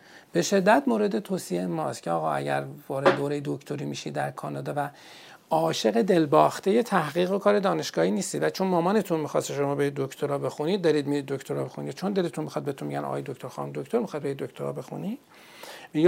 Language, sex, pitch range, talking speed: Persian, male, 135-185 Hz, 180 wpm